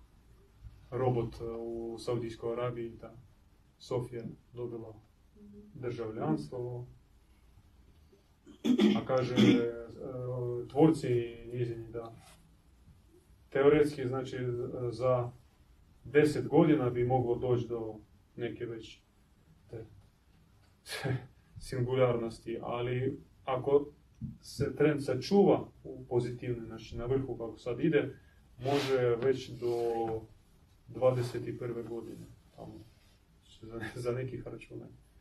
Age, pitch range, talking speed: 30-49, 110-130 Hz, 85 wpm